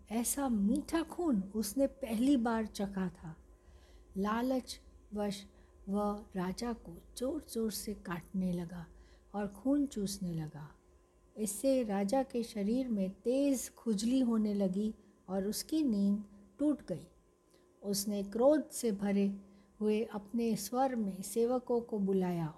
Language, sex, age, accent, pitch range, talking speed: Hindi, female, 60-79, native, 195-235 Hz, 125 wpm